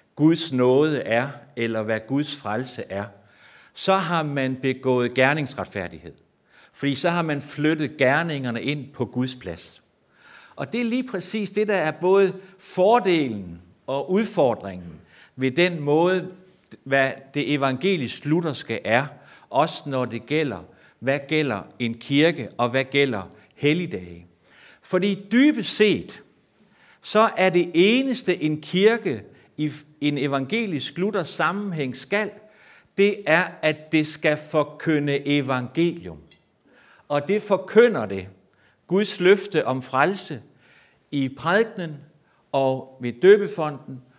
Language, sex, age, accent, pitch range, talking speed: Danish, male, 60-79, native, 125-180 Hz, 120 wpm